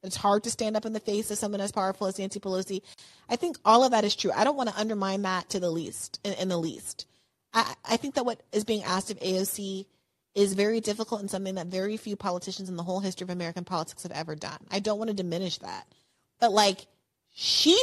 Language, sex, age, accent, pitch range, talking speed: English, female, 30-49, American, 190-225 Hz, 245 wpm